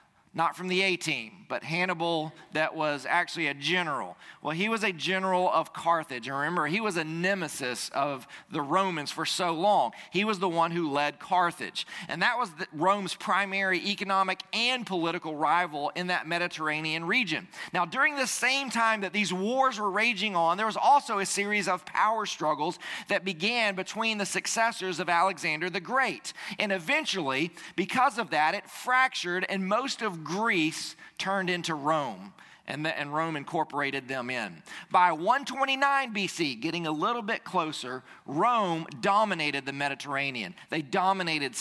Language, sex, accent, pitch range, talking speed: English, male, American, 160-200 Hz, 165 wpm